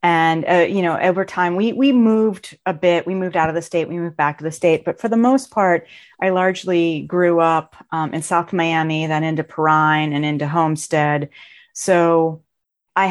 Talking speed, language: 200 wpm, English